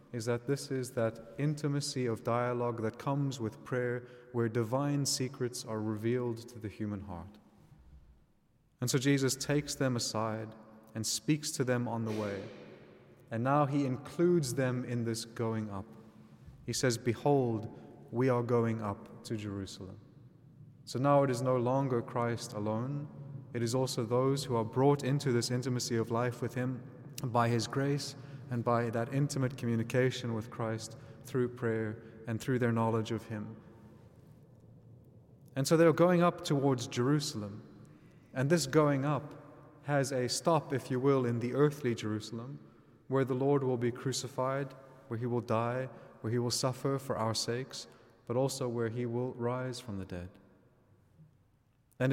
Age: 30-49